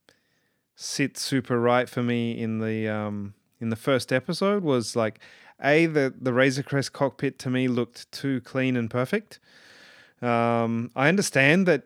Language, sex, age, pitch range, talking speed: English, male, 30-49, 115-135 Hz, 155 wpm